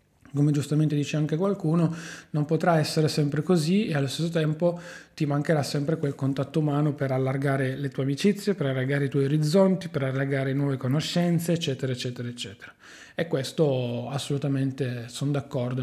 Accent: native